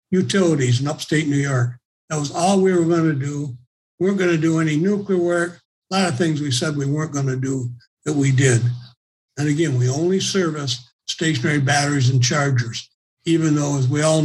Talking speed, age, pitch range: 195 wpm, 60-79, 130-170 Hz